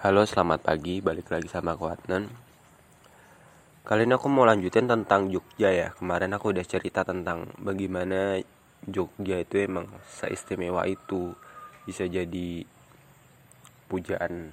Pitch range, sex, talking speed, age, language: 95-110 Hz, male, 125 wpm, 20-39, Indonesian